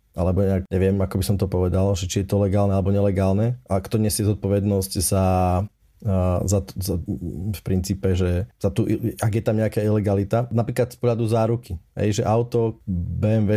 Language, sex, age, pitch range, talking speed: Slovak, male, 20-39, 100-115 Hz, 175 wpm